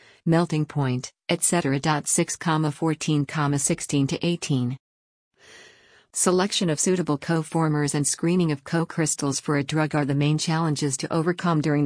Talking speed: 135 wpm